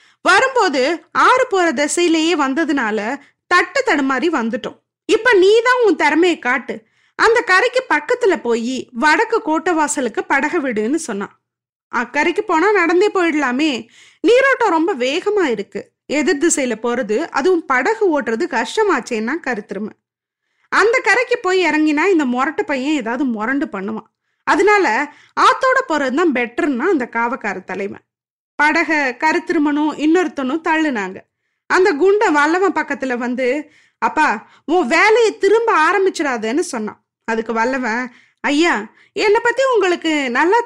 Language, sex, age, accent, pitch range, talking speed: Tamil, female, 20-39, native, 255-370 Hz, 115 wpm